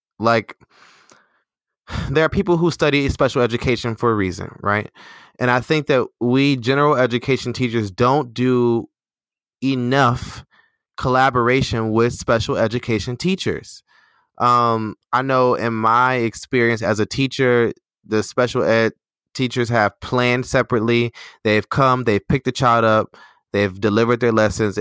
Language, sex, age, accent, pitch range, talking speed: English, male, 20-39, American, 110-135 Hz, 135 wpm